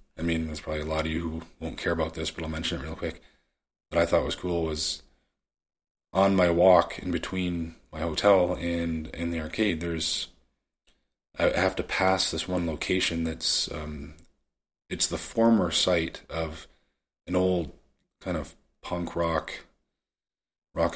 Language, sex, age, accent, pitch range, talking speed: English, male, 30-49, American, 80-85 Hz, 165 wpm